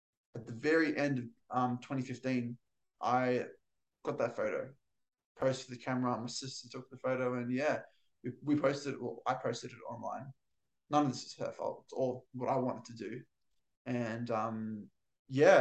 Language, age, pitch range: English, 20-39, 120-140 Hz